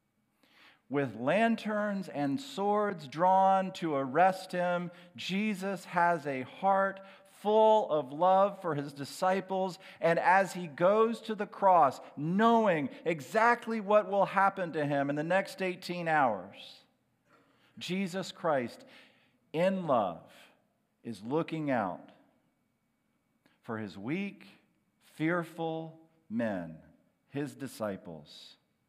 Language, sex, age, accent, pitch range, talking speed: English, male, 50-69, American, 155-190 Hz, 105 wpm